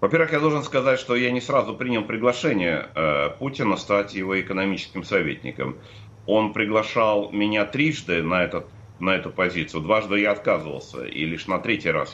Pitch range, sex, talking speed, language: 90-110 Hz, male, 160 wpm, Russian